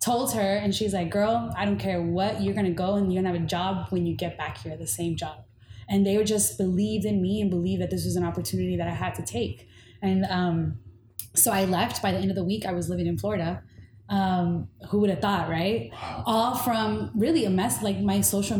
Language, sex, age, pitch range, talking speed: English, female, 20-39, 170-205 Hz, 245 wpm